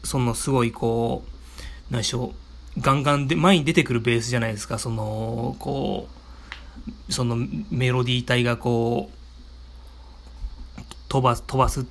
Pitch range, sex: 110-135 Hz, male